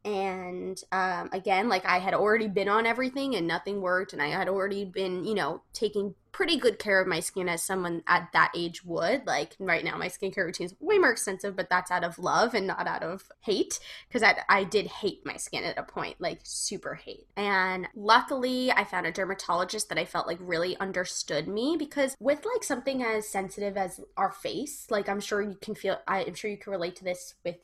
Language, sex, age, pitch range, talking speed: English, female, 10-29, 185-230 Hz, 225 wpm